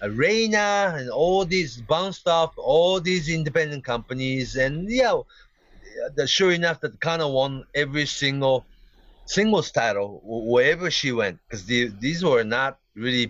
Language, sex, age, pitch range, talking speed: English, male, 40-59, 110-155 Hz, 130 wpm